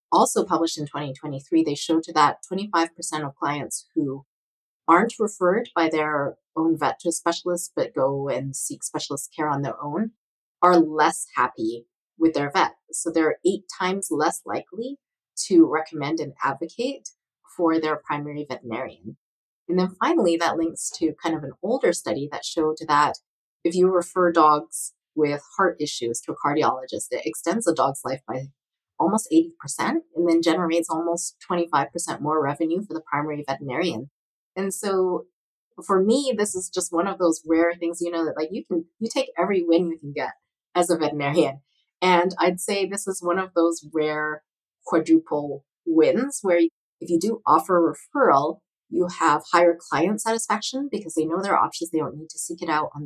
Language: English